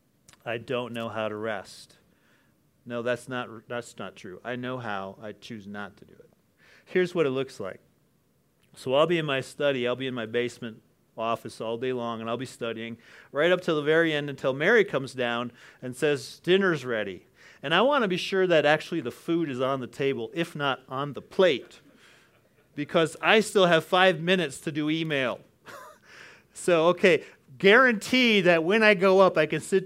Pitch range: 125-165 Hz